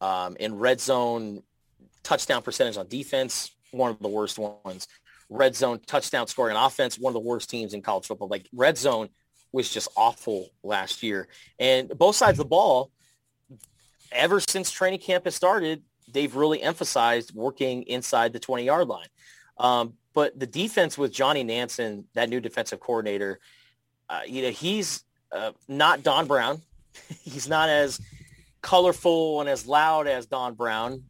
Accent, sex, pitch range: American, male, 115-145 Hz